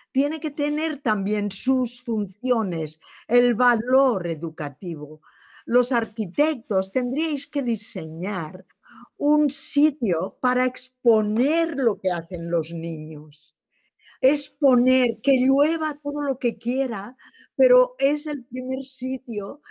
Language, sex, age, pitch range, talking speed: Spanish, female, 50-69, 190-270 Hz, 105 wpm